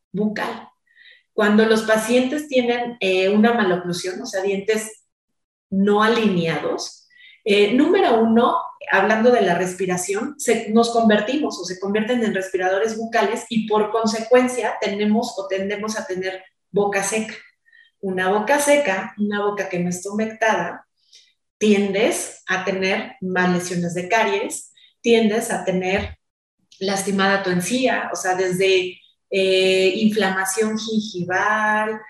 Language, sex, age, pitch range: Spanish, female, 30-49, 195-245 Hz